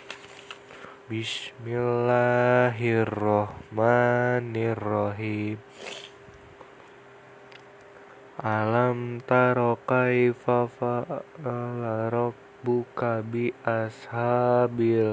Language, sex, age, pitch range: Indonesian, male, 20-39, 105-120 Hz